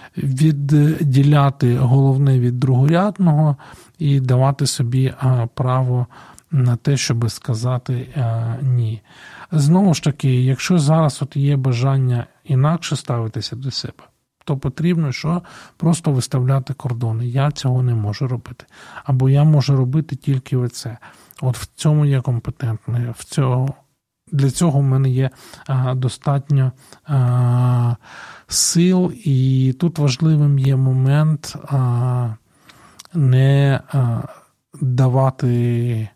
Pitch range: 125-140 Hz